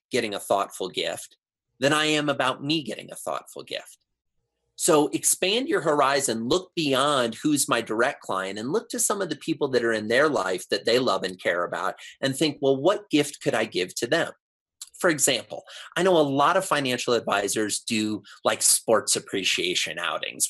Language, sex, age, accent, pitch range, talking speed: English, male, 30-49, American, 110-155 Hz, 190 wpm